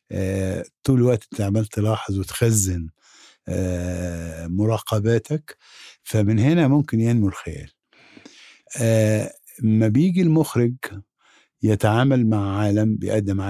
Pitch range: 100-125 Hz